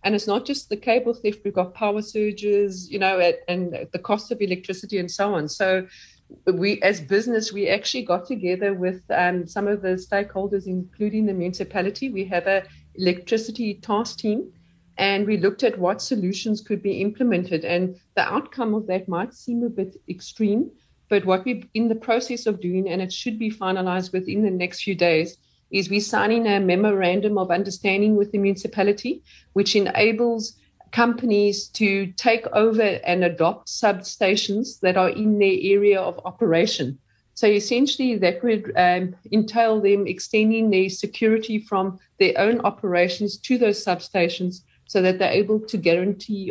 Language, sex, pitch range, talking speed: English, female, 185-215 Hz, 170 wpm